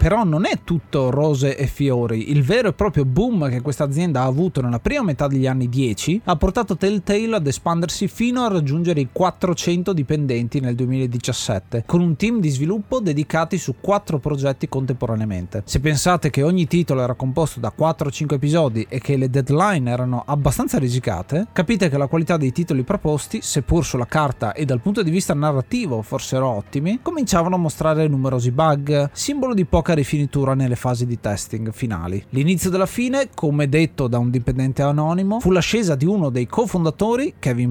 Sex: male